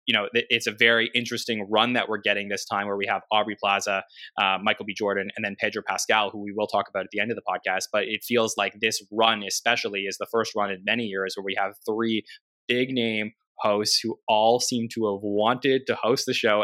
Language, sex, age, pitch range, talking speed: English, male, 20-39, 105-125 Hz, 240 wpm